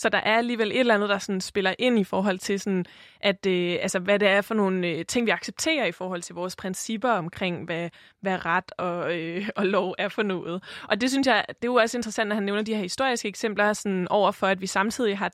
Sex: female